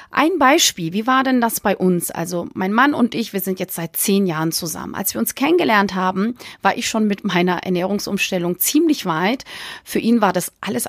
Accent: German